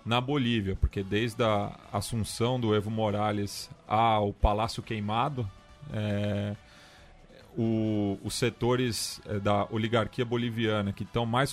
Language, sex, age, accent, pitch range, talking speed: Portuguese, male, 30-49, Brazilian, 105-125 Hz, 115 wpm